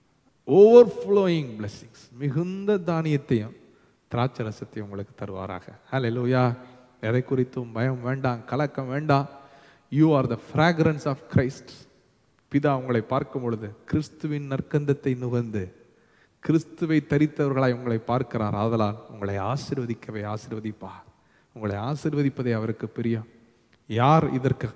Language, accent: Tamil, native